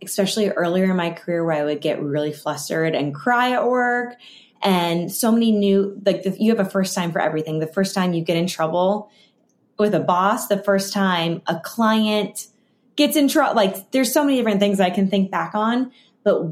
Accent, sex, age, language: American, female, 10-29, English